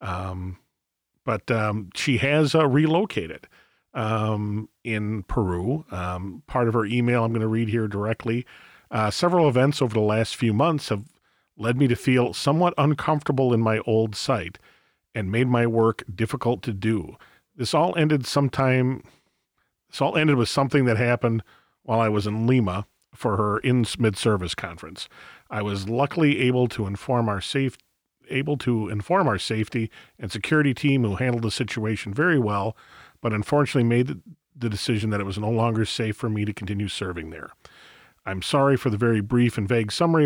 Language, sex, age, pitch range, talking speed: English, male, 40-59, 105-135 Hz, 175 wpm